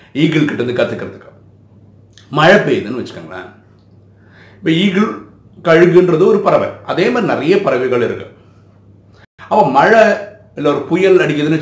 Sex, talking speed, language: male, 90 wpm, Tamil